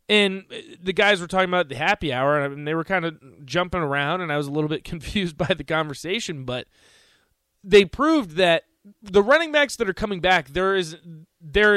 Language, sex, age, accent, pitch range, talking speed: English, male, 20-39, American, 150-205 Hz, 195 wpm